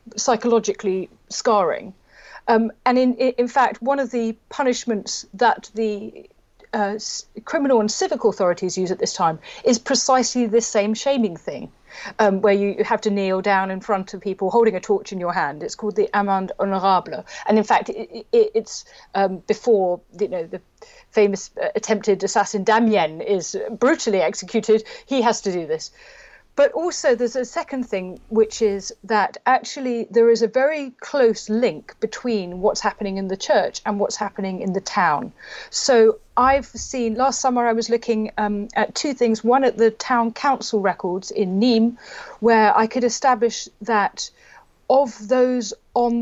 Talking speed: 175 wpm